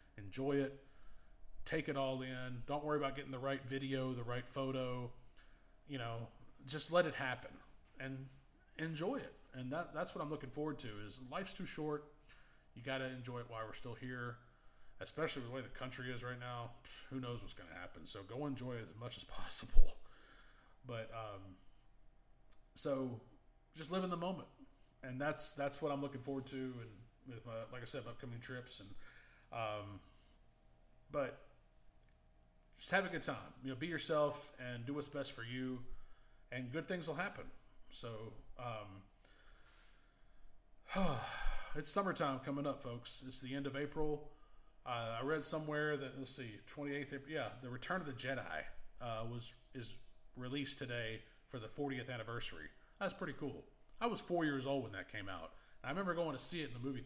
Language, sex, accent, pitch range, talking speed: English, male, American, 115-145 Hz, 185 wpm